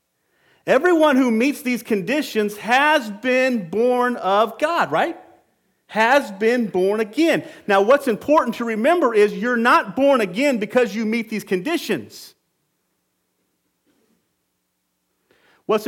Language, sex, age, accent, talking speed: English, male, 40-59, American, 115 wpm